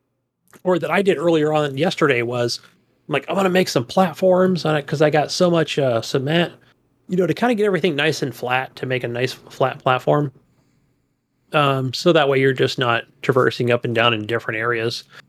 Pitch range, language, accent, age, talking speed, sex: 125-160 Hz, English, American, 30-49, 210 wpm, male